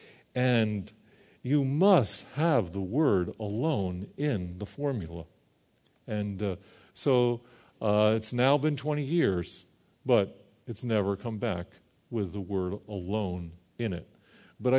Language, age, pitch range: English, 50-69, 100-145 Hz